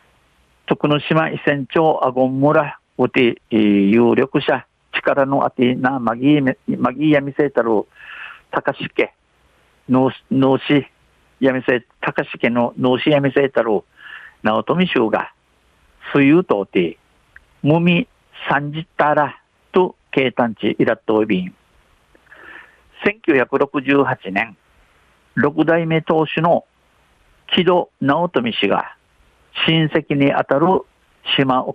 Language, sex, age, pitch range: Japanese, male, 50-69, 125-150 Hz